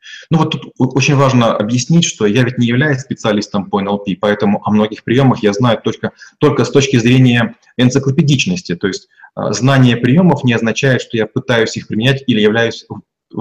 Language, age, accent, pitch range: Russian, 30-49, native, 120-155 Hz